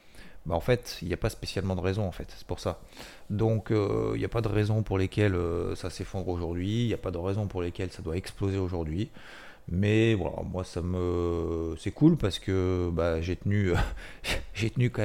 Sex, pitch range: male, 85-105 Hz